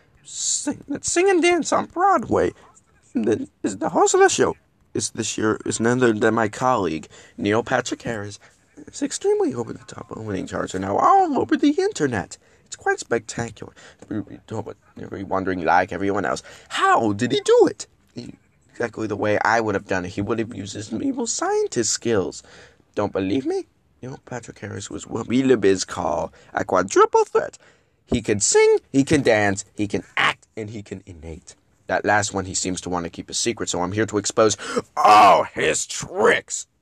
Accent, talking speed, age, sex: American, 185 wpm, 20-39, male